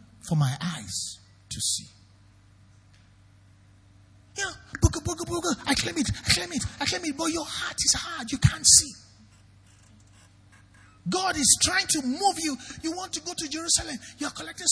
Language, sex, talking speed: English, male, 150 wpm